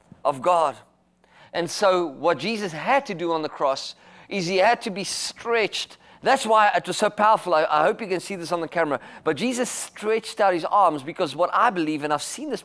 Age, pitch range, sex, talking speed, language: 30-49, 165-230 Hz, male, 230 wpm, English